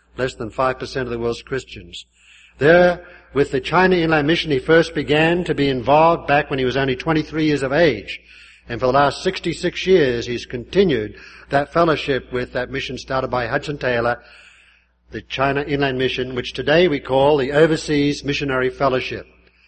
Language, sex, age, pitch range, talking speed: English, male, 50-69, 130-160 Hz, 175 wpm